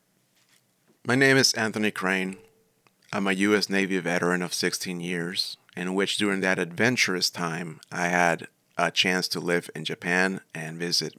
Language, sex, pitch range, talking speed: English, male, 85-110 Hz, 155 wpm